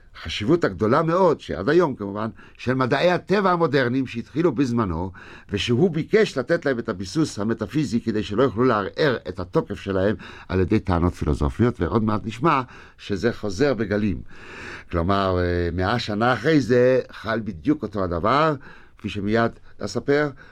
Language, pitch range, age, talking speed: Hebrew, 80-110 Hz, 60-79, 140 wpm